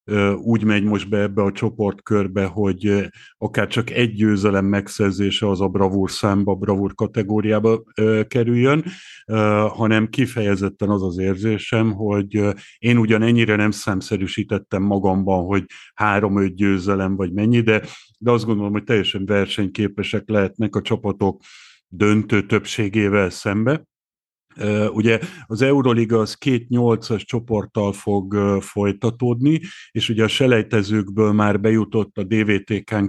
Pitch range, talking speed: 100-110 Hz, 120 wpm